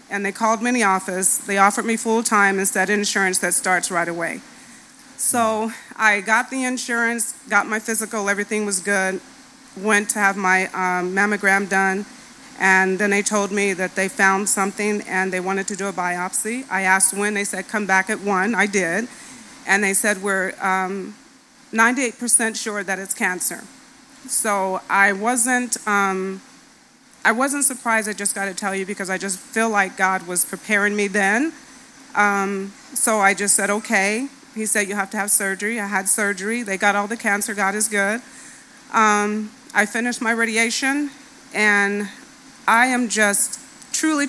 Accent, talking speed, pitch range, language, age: American, 175 wpm, 195-245 Hz, English, 40-59